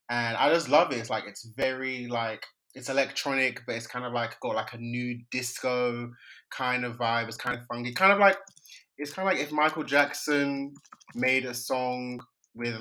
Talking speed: 200 wpm